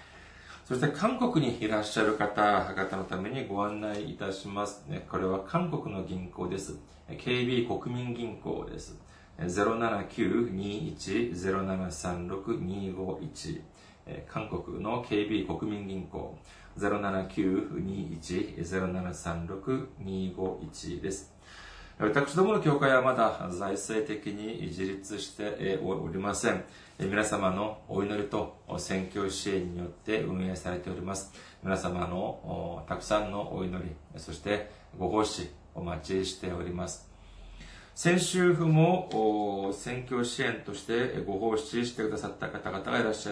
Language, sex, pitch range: Japanese, male, 90-115 Hz